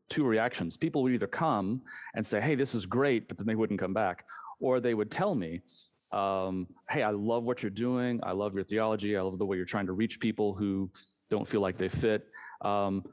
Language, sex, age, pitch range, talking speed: English, male, 30-49, 95-120 Hz, 230 wpm